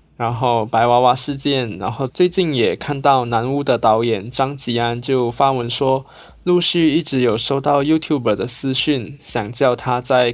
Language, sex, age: Chinese, male, 20-39